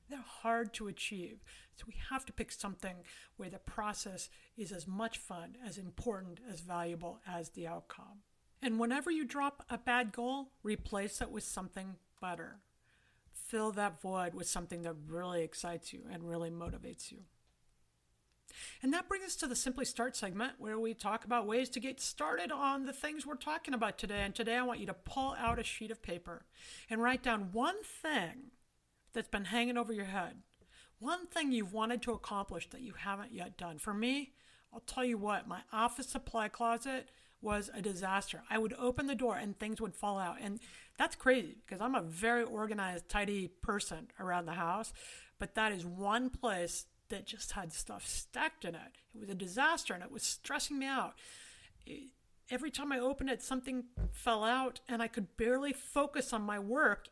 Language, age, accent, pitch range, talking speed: English, 50-69, American, 200-255 Hz, 190 wpm